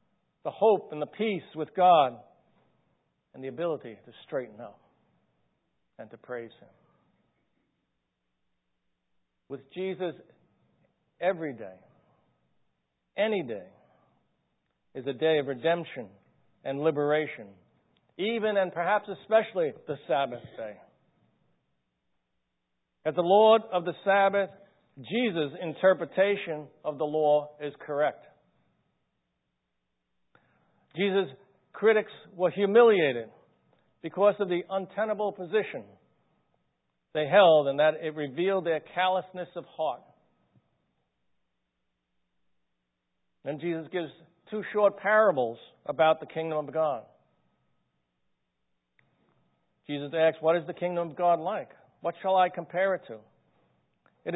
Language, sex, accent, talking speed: English, male, American, 105 wpm